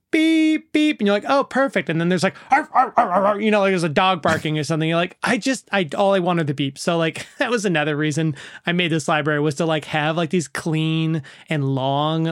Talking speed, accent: 260 wpm, American